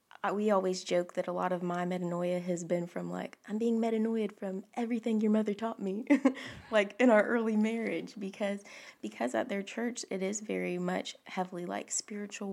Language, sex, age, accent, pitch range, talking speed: English, female, 20-39, American, 175-215 Hz, 190 wpm